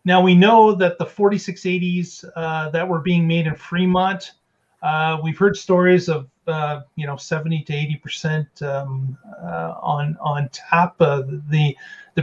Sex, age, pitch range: male, 40-59, 155-190 Hz